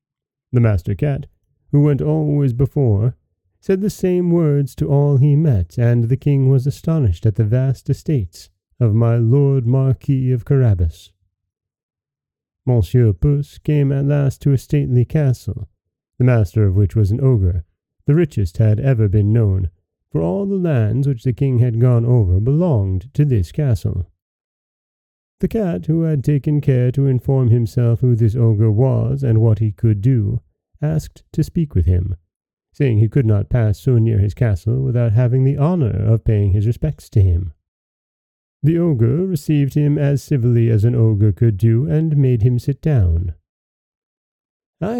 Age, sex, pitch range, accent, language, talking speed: 30-49, male, 110-145 Hz, American, English, 165 wpm